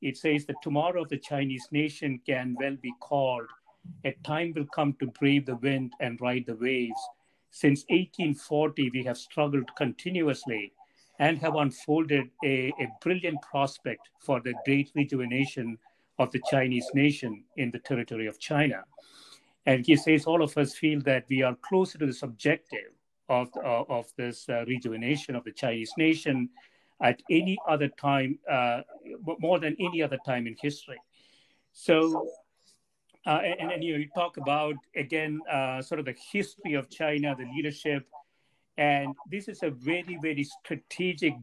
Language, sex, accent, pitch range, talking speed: English, male, Indian, 130-155 Hz, 160 wpm